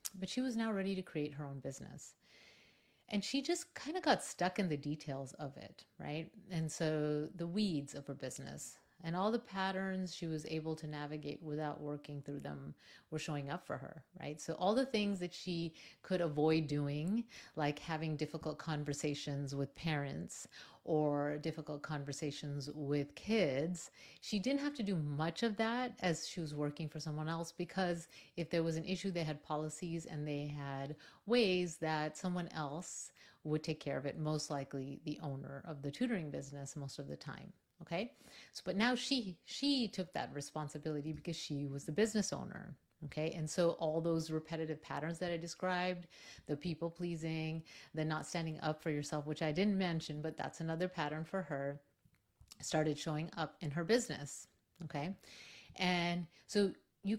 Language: English